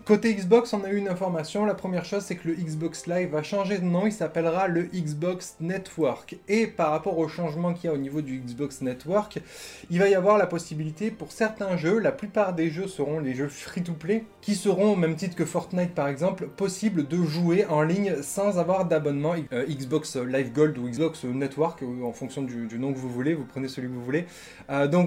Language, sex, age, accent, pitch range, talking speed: French, male, 20-39, French, 150-185 Hz, 225 wpm